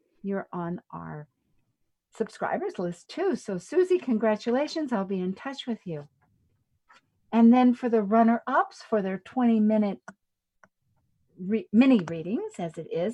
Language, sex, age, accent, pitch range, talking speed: English, female, 50-69, American, 170-240 Hz, 130 wpm